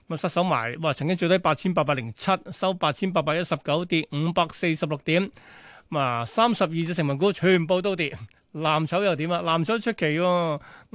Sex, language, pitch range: male, Chinese, 150-190 Hz